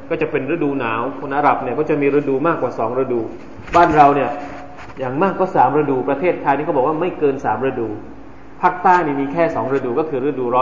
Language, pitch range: Thai, 135-205 Hz